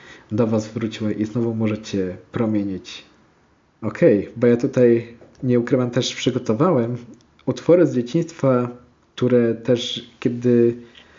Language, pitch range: Polish, 110-130 Hz